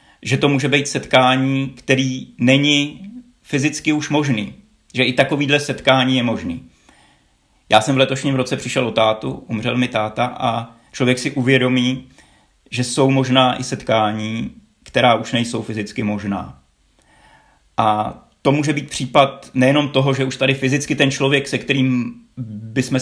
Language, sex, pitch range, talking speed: Czech, male, 115-135 Hz, 150 wpm